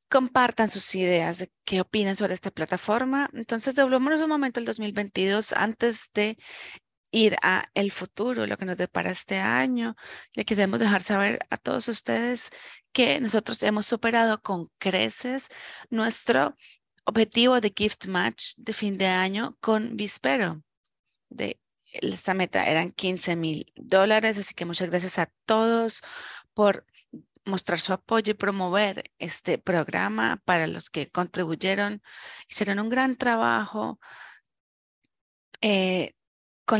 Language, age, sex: English, 20-39, female